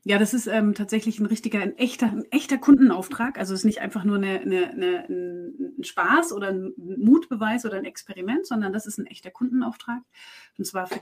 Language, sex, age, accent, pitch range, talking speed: German, female, 30-49, German, 195-250 Hz, 205 wpm